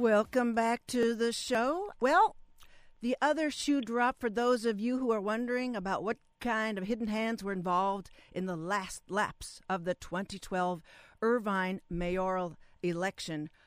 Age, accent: 50-69, American